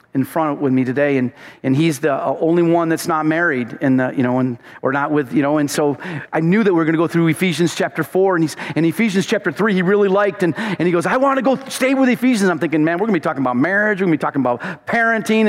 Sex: male